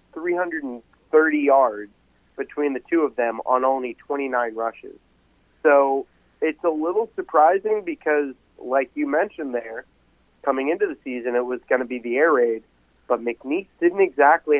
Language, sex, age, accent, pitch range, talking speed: English, male, 30-49, American, 125-145 Hz, 170 wpm